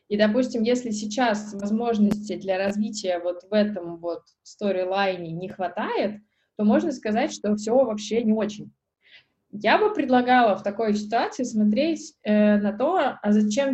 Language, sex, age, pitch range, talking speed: Russian, female, 20-39, 195-235 Hz, 150 wpm